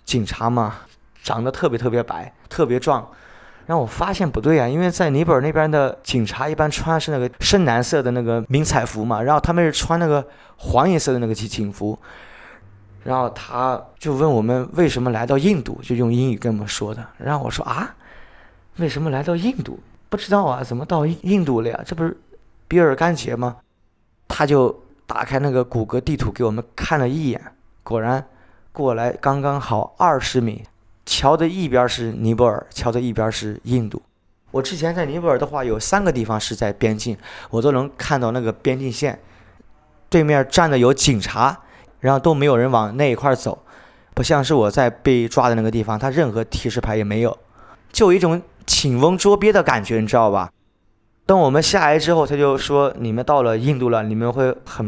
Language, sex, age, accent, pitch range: Chinese, male, 20-39, native, 115-150 Hz